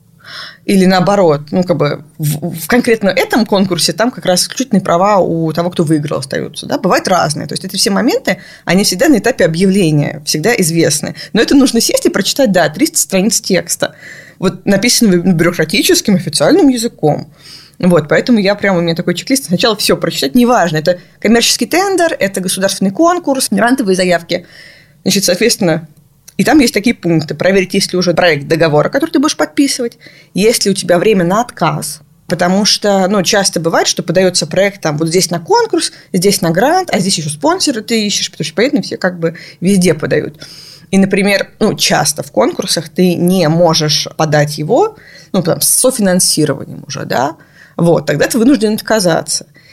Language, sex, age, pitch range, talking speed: Russian, female, 20-39, 165-225 Hz, 175 wpm